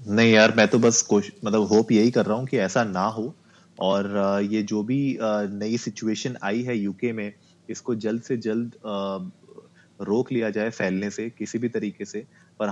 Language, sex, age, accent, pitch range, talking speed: Hindi, male, 30-49, native, 110-130 Hz, 190 wpm